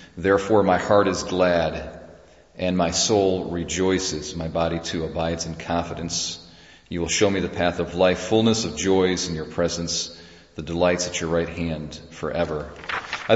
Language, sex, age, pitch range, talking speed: English, male, 40-59, 85-105 Hz, 165 wpm